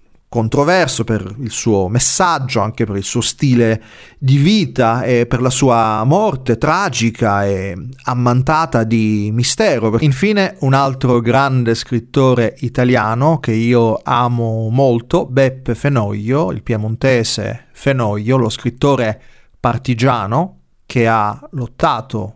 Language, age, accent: Italian, 30-49, native